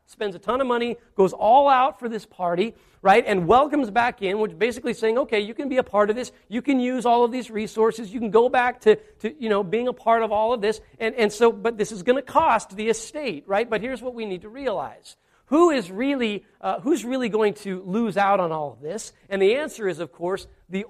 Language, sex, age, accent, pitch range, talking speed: English, male, 40-59, American, 195-250 Hz, 255 wpm